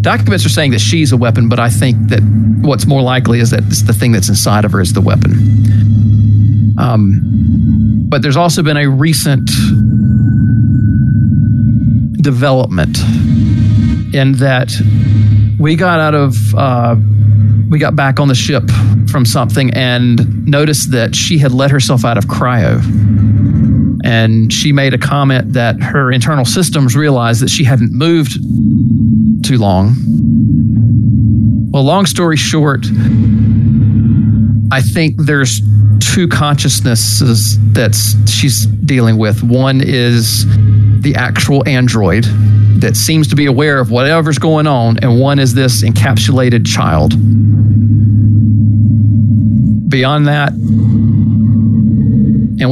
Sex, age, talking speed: male, 40-59, 125 wpm